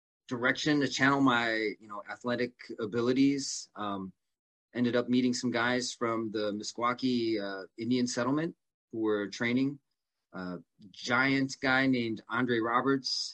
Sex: male